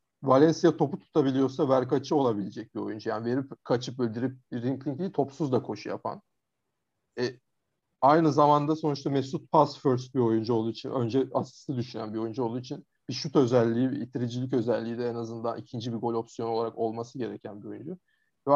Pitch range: 120-145 Hz